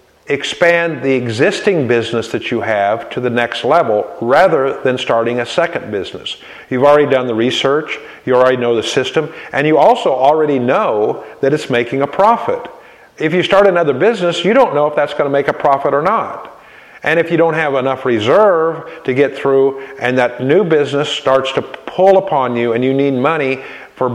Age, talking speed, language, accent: 50-69, 195 wpm, English, American